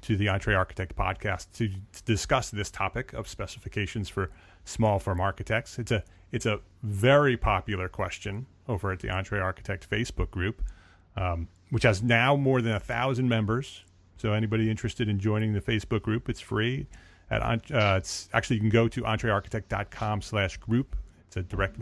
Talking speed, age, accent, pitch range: 175 wpm, 30-49, American, 95-115 Hz